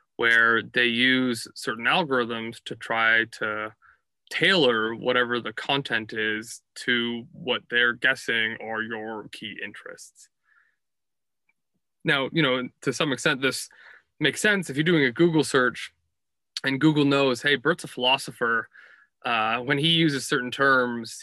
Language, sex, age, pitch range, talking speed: English, male, 20-39, 115-140 Hz, 140 wpm